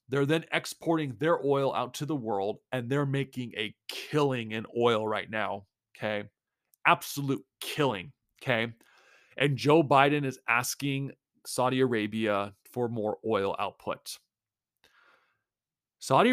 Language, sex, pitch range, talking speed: English, male, 110-140 Hz, 125 wpm